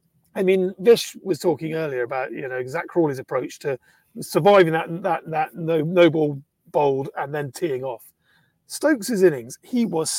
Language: English